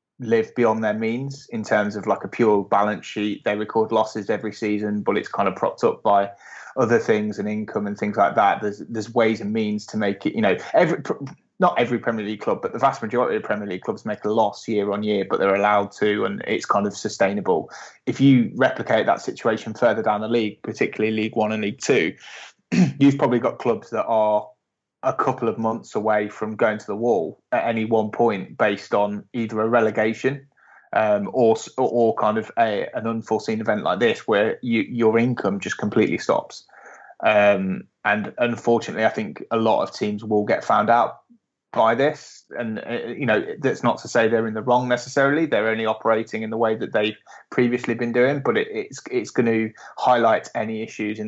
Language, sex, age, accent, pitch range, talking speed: English, male, 20-39, British, 105-125 Hz, 210 wpm